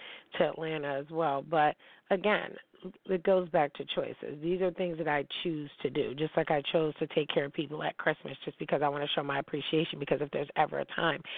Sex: female